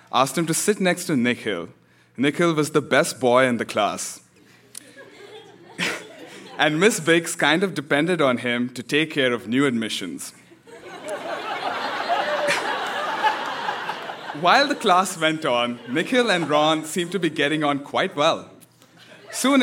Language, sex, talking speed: English, male, 140 wpm